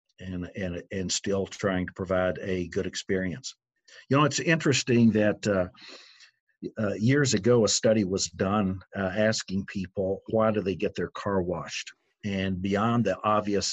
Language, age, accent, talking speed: English, 50-69, American, 160 wpm